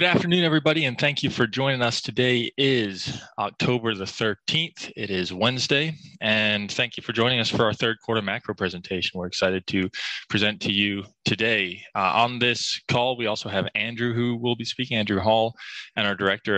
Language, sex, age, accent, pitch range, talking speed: English, male, 20-39, American, 100-125 Hz, 190 wpm